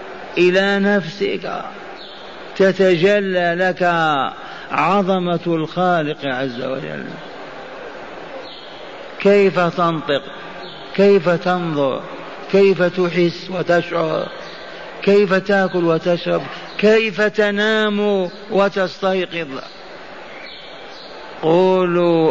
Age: 50-69